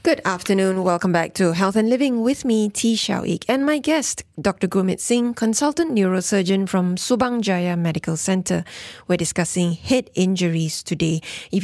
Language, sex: English, female